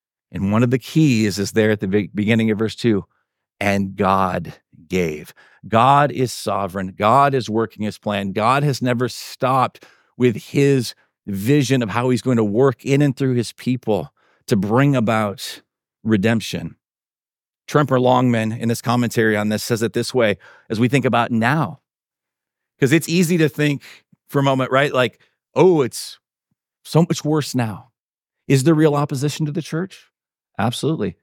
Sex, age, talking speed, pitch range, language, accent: male, 50-69, 165 wpm, 115-145 Hz, English, American